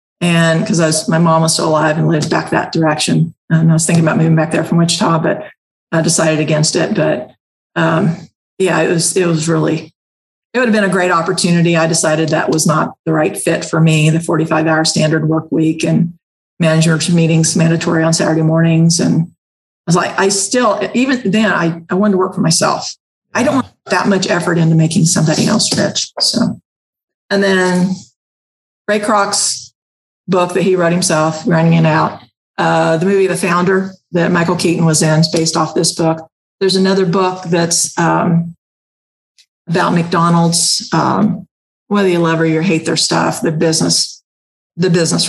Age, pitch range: 40-59, 160-185 Hz